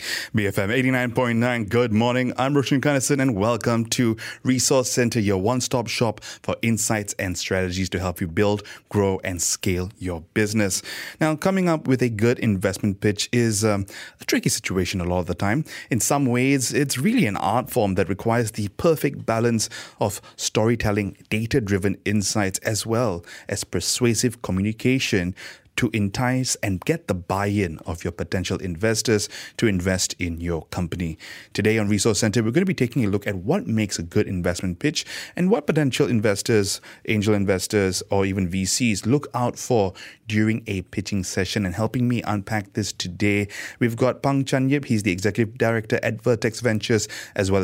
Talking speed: 170 wpm